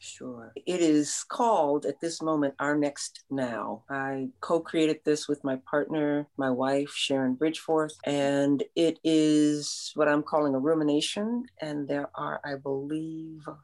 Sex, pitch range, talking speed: female, 145-180 Hz, 145 wpm